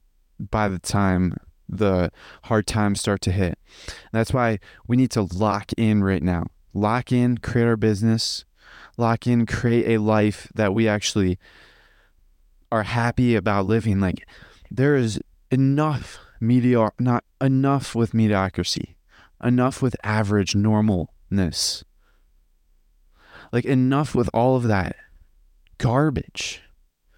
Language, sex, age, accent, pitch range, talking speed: English, male, 20-39, American, 95-120 Hz, 125 wpm